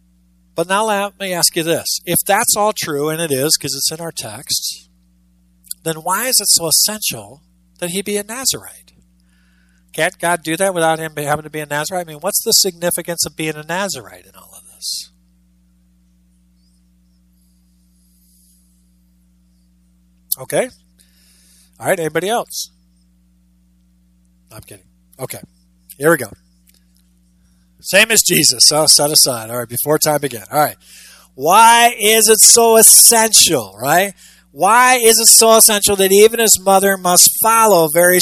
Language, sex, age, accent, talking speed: English, male, 50-69, American, 150 wpm